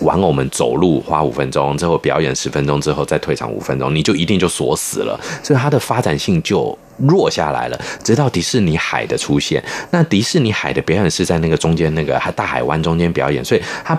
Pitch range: 75-95 Hz